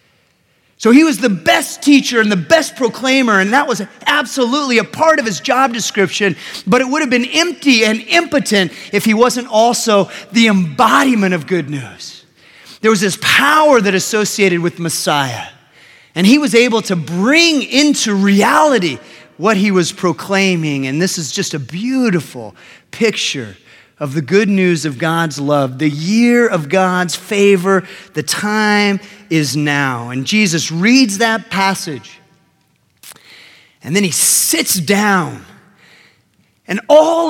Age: 30-49